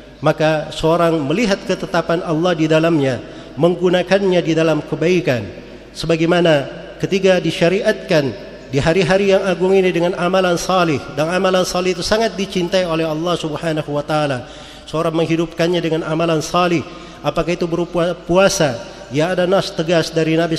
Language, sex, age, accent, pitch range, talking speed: Indonesian, male, 40-59, native, 155-180 Hz, 135 wpm